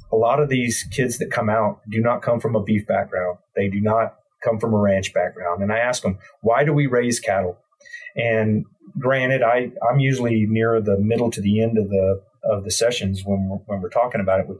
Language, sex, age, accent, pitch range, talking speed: English, male, 40-59, American, 110-150 Hz, 225 wpm